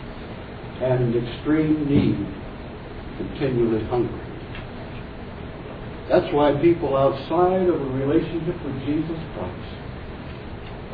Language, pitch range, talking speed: English, 115-155 Hz, 80 wpm